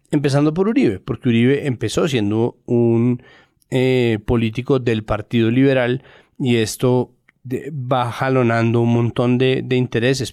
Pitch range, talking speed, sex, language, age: 120-140 Hz, 135 wpm, male, Spanish, 30-49